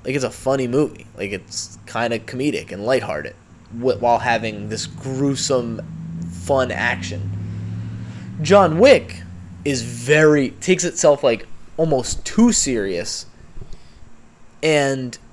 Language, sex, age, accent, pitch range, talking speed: English, male, 20-39, American, 110-165 Hz, 115 wpm